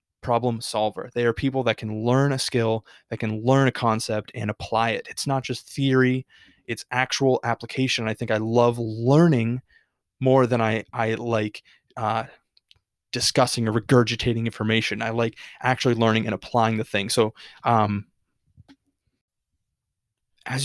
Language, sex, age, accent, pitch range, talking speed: English, male, 20-39, American, 110-130 Hz, 150 wpm